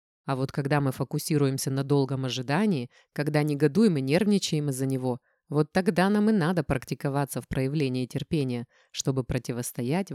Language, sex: Russian, female